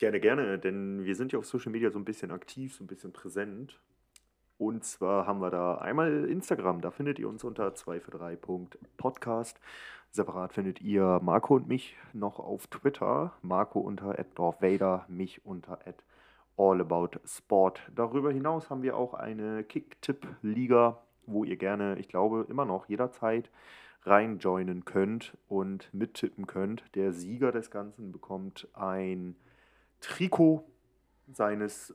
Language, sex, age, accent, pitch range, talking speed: German, male, 30-49, German, 95-115 Hz, 140 wpm